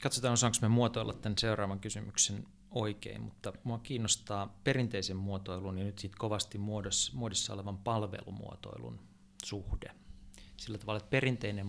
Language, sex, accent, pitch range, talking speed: Finnish, male, native, 100-115 Hz, 130 wpm